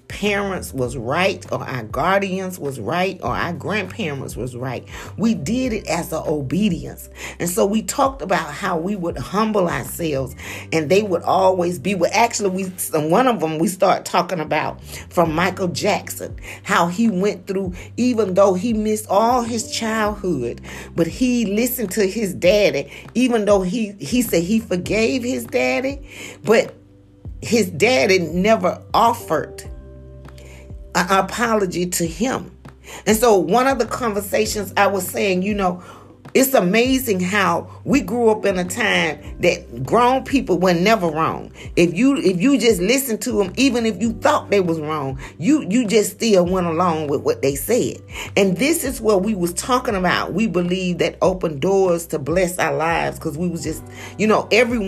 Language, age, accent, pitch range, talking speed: English, 40-59, American, 160-215 Hz, 175 wpm